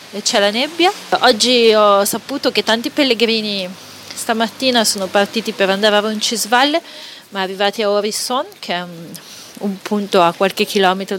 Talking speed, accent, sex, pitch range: 150 wpm, native, female, 190-230 Hz